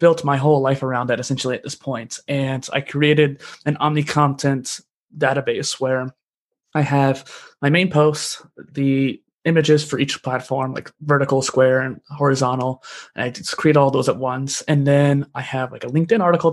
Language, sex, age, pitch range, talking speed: English, male, 20-39, 130-150 Hz, 175 wpm